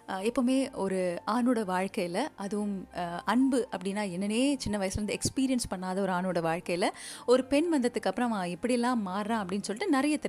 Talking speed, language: 140 wpm, Tamil